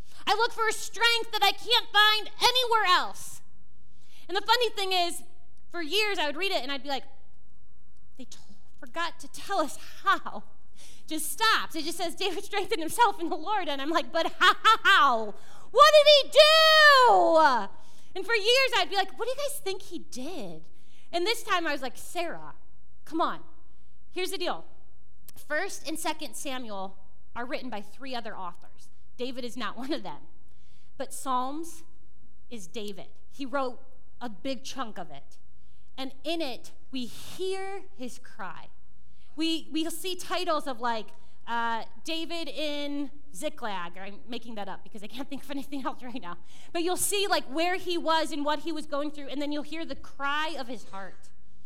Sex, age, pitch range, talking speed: female, 30-49, 260-365 Hz, 180 wpm